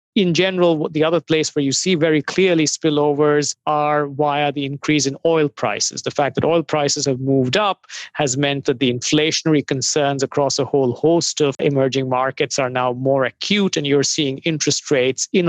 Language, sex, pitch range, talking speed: English, male, 130-155 Hz, 190 wpm